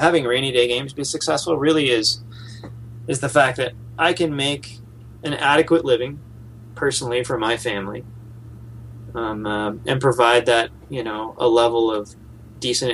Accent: American